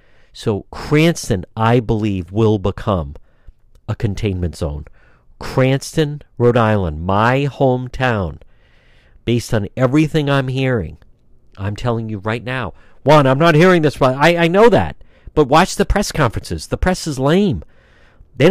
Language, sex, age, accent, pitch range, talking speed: English, male, 50-69, American, 100-145 Hz, 140 wpm